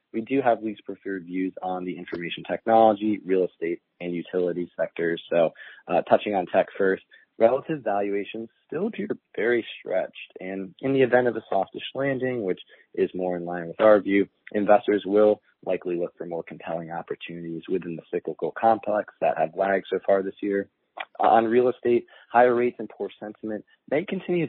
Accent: American